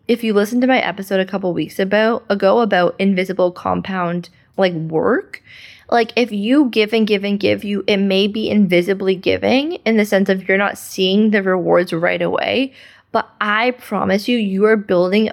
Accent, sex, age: American, female, 20-39